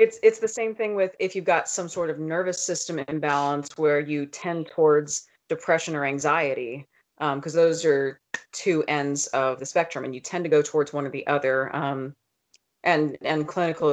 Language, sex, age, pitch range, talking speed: English, female, 30-49, 145-180 Hz, 195 wpm